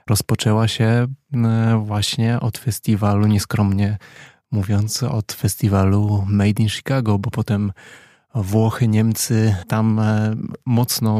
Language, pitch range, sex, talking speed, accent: Polish, 105-120 Hz, male, 95 wpm, native